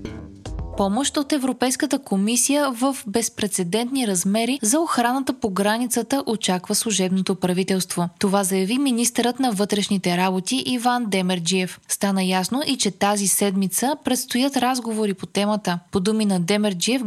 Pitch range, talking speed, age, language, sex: 195-245 Hz, 125 wpm, 20-39, Bulgarian, female